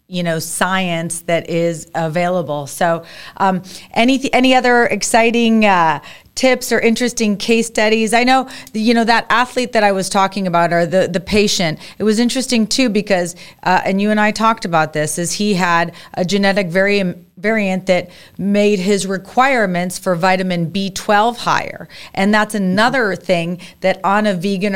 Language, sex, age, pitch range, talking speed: English, female, 30-49, 180-220 Hz, 165 wpm